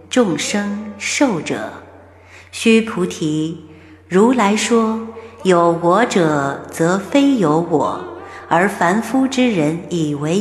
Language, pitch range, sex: Chinese, 150-200 Hz, female